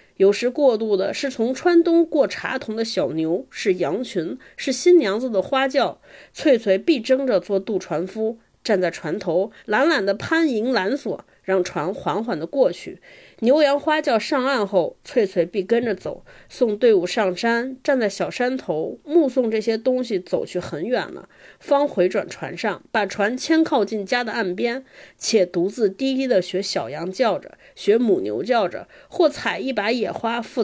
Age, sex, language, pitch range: 30-49, female, Chinese, 210-290 Hz